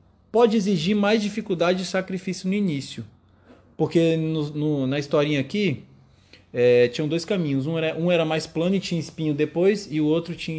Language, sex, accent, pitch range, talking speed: Portuguese, male, Brazilian, 130-190 Hz, 160 wpm